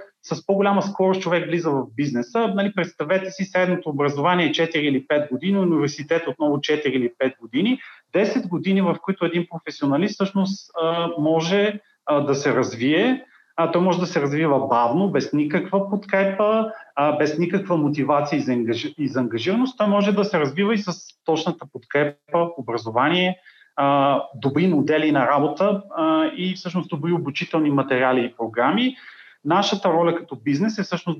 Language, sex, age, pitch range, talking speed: Bulgarian, male, 30-49, 145-190 Hz, 145 wpm